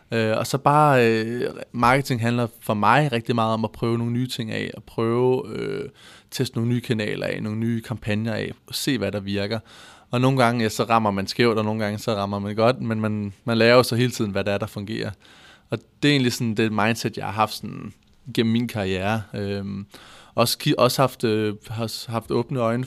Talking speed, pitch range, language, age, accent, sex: 230 wpm, 110-125 Hz, Danish, 20-39, native, male